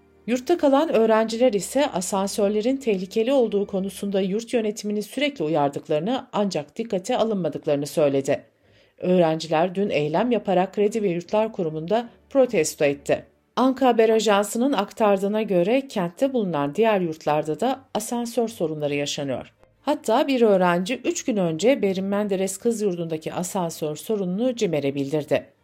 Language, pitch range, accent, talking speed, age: Turkish, 160-230 Hz, native, 125 wpm, 50-69